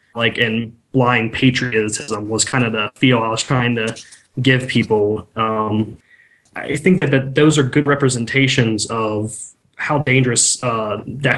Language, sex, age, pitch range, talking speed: English, male, 20-39, 115-135 Hz, 155 wpm